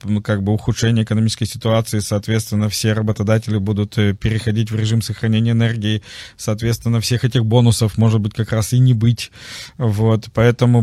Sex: male